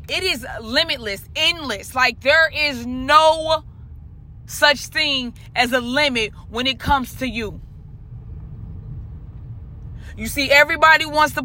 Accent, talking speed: American, 120 wpm